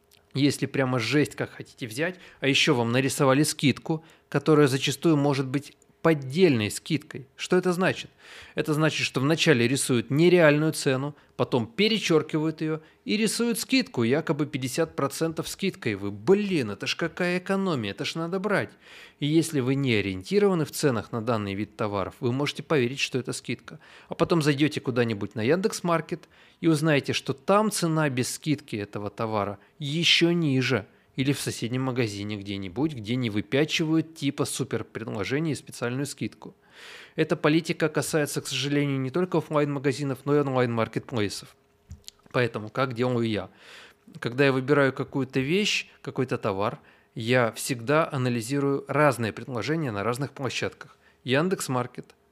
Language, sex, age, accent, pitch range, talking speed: Russian, male, 20-39, native, 120-160 Hz, 145 wpm